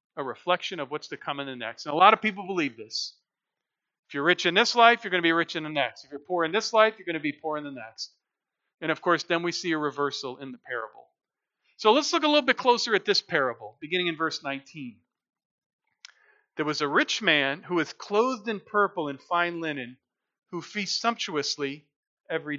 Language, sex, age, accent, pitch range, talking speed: English, male, 40-59, American, 150-200 Hz, 230 wpm